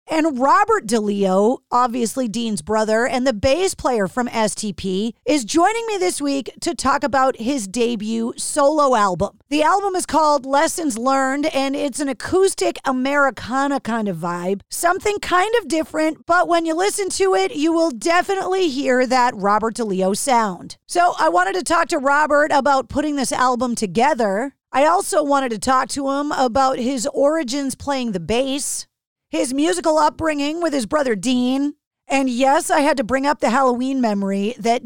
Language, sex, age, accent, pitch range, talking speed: English, female, 40-59, American, 230-315 Hz, 170 wpm